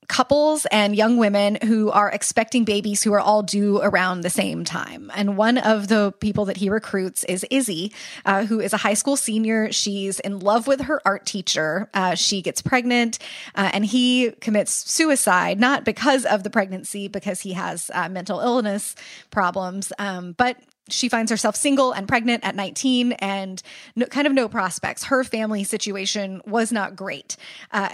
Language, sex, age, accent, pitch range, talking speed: English, female, 20-39, American, 195-235 Hz, 180 wpm